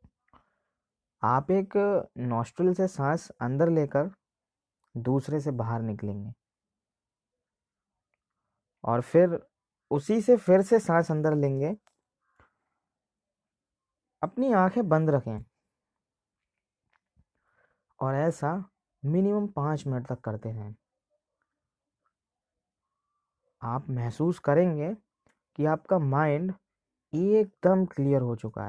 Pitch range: 120-175 Hz